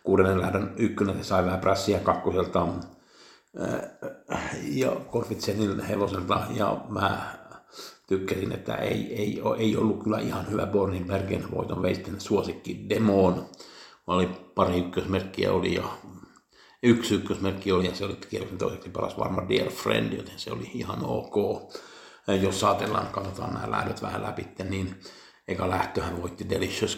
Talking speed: 130 wpm